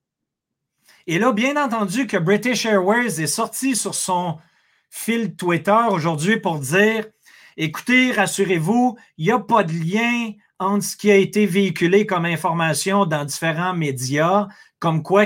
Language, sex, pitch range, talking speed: French, male, 170-225 Hz, 145 wpm